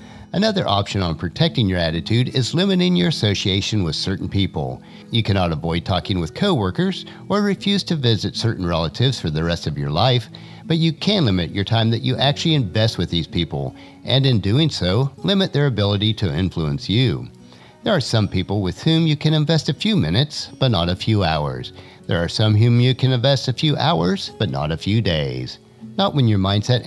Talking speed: 200 wpm